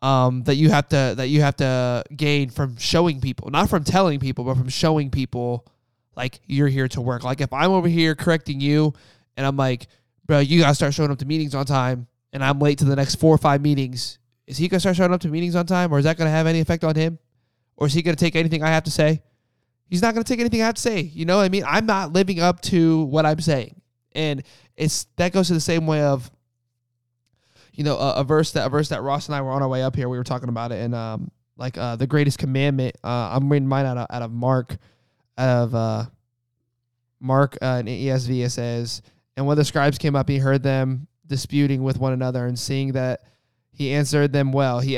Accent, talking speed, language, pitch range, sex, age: American, 245 wpm, English, 125-155 Hz, male, 20-39